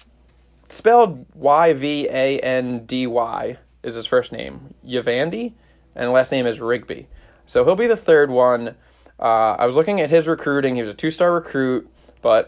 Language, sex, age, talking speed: English, male, 20-39, 150 wpm